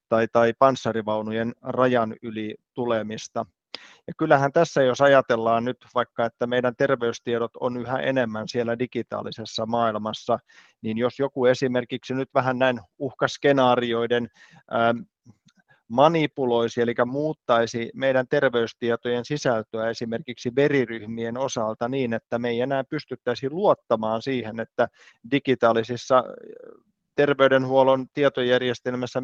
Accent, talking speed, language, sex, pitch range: native, 105 wpm, Finnish, male, 115-135 Hz